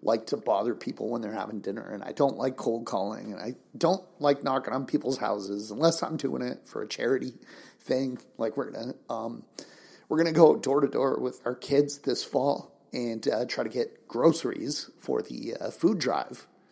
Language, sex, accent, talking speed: English, male, American, 200 wpm